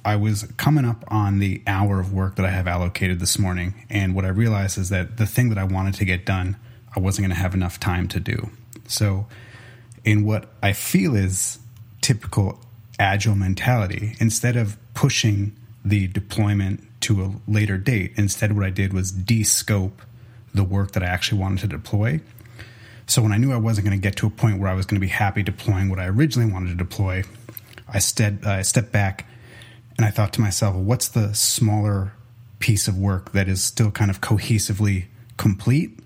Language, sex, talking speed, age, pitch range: English, male, 195 wpm, 30-49, 100-115 Hz